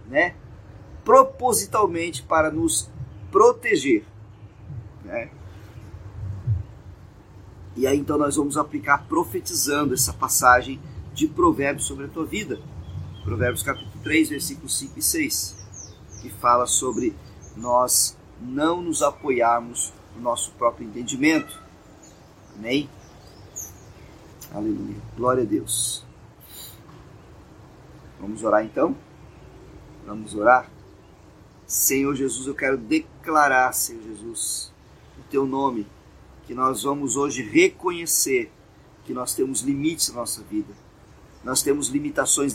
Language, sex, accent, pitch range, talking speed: Portuguese, male, Brazilian, 105-155 Hz, 105 wpm